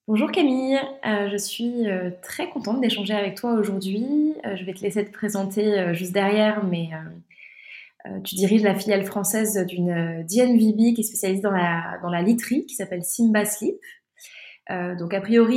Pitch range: 180-220 Hz